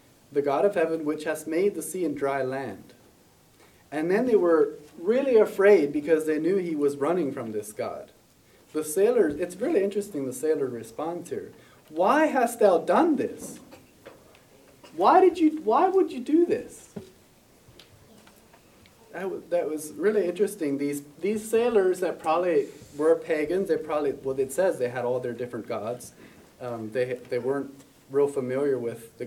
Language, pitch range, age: English, 135-215 Hz, 30-49